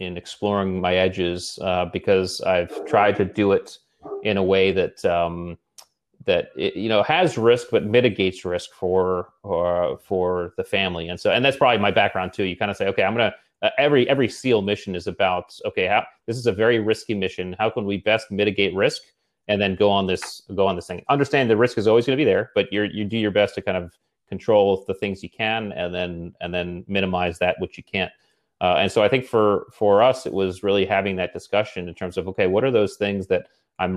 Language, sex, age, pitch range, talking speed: English, male, 30-49, 90-105 Hz, 235 wpm